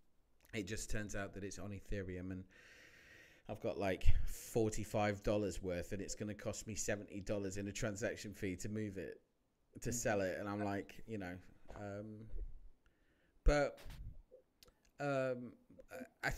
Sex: male